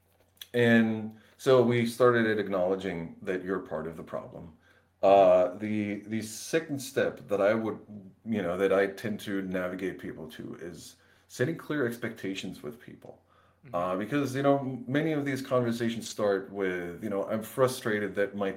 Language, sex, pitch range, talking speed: English, male, 95-115 Hz, 165 wpm